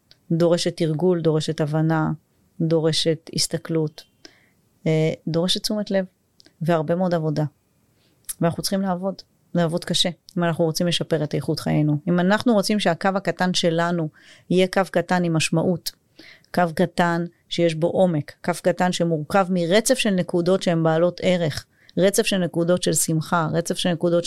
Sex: female